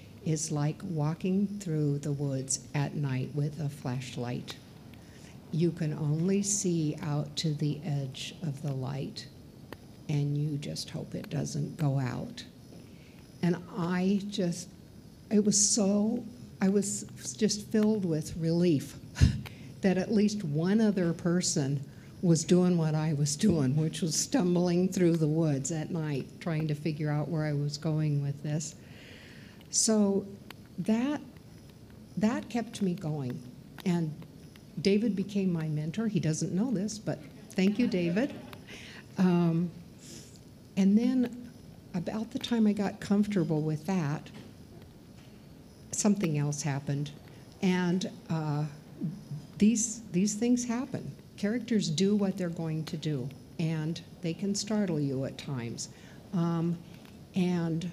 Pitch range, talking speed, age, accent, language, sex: 150-200 Hz, 130 wpm, 60-79, American, English, female